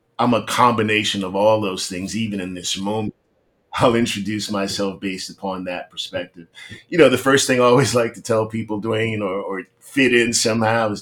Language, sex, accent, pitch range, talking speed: English, male, American, 100-115 Hz, 195 wpm